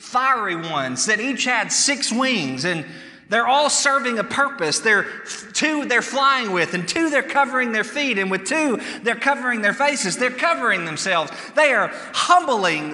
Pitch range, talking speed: 205-280 Hz, 170 wpm